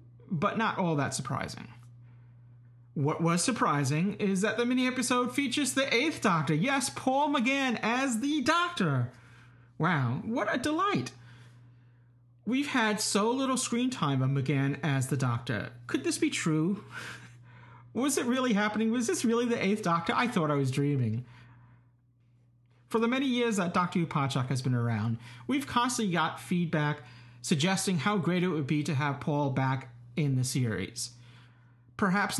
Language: English